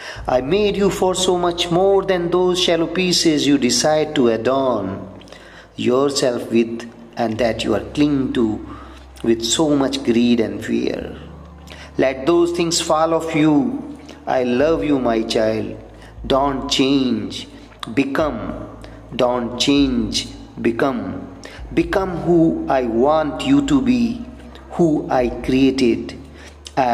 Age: 40-59